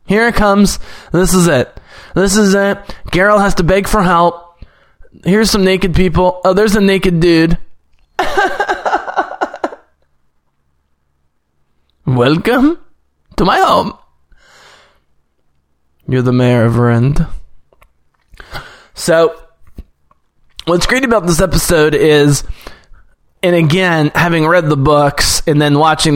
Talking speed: 110 wpm